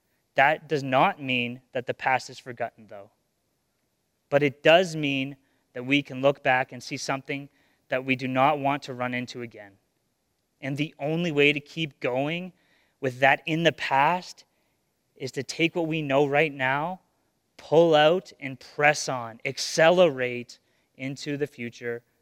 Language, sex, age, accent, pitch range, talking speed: English, male, 30-49, American, 125-145 Hz, 160 wpm